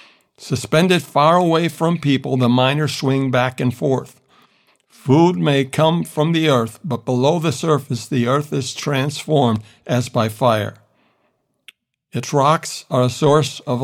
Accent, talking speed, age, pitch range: American, 150 wpm, 60-79, 125-155 Hz